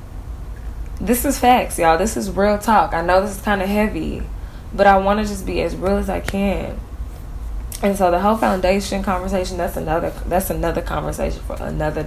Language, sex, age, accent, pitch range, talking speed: English, female, 10-29, American, 165-205 Hz, 195 wpm